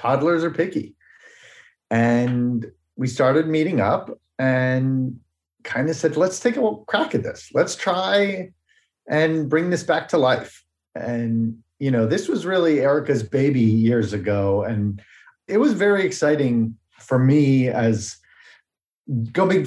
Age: 30-49